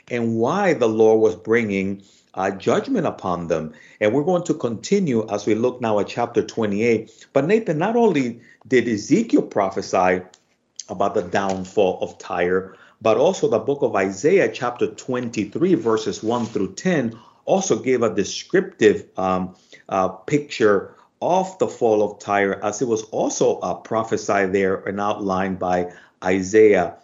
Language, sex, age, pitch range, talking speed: English, male, 50-69, 100-130 Hz, 155 wpm